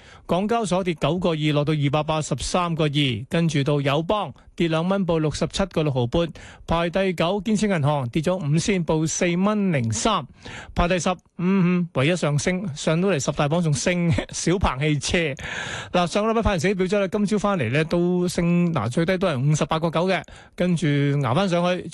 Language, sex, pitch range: Chinese, male, 150-185 Hz